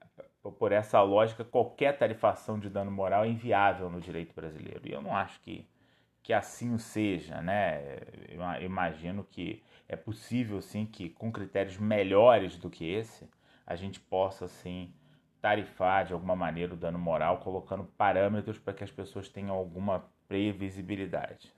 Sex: male